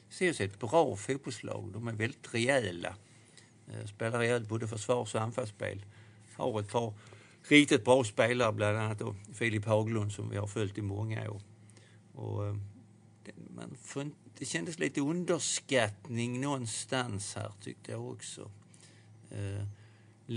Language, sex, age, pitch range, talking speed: Swedish, male, 60-79, 105-120 Hz, 140 wpm